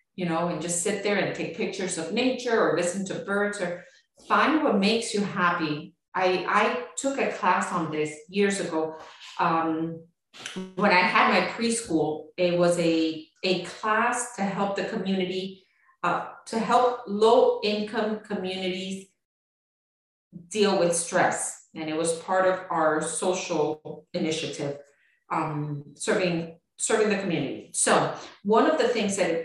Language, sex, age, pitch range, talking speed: English, female, 40-59, 170-210 Hz, 150 wpm